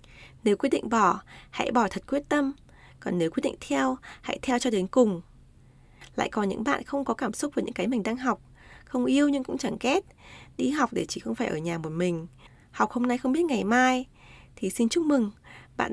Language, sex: Vietnamese, female